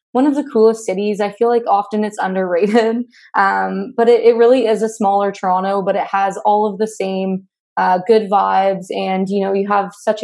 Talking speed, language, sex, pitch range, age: 210 wpm, English, female, 195-215 Hz, 20-39